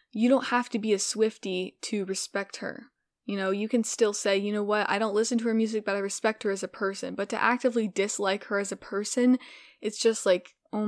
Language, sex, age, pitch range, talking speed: English, female, 10-29, 195-225 Hz, 245 wpm